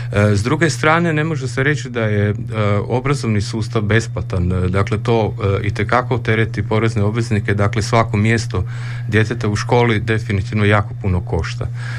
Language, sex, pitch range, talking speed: Croatian, male, 100-120 Hz, 145 wpm